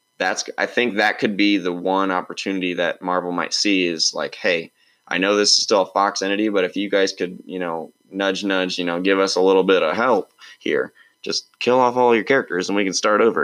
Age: 20-39